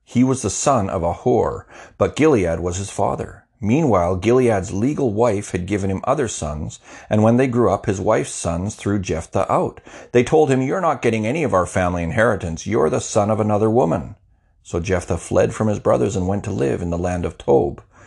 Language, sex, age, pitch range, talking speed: English, male, 40-59, 95-120 Hz, 215 wpm